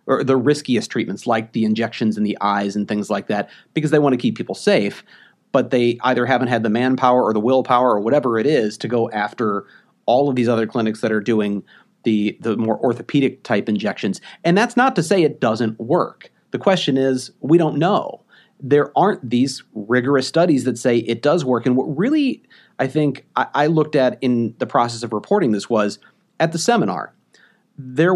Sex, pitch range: male, 115-150 Hz